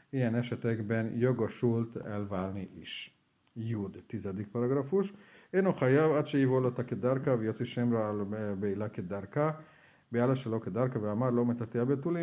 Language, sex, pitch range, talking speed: Hungarian, male, 105-125 Hz, 155 wpm